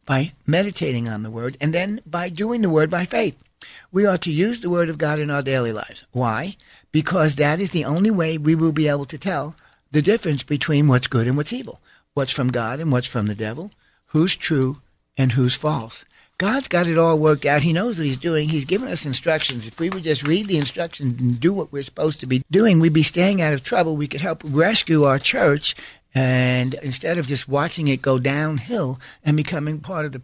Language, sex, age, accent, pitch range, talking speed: English, male, 60-79, American, 130-170 Hz, 225 wpm